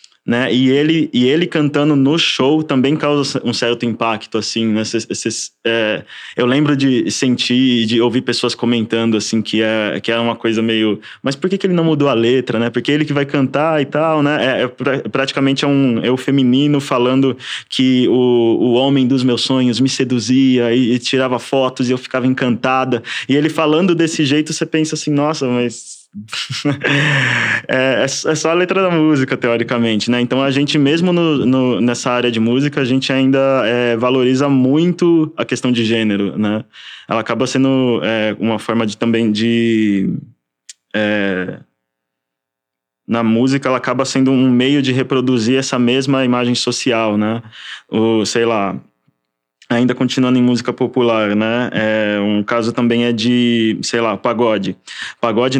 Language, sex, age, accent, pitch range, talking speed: Portuguese, male, 20-39, Brazilian, 115-135 Hz, 170 wpm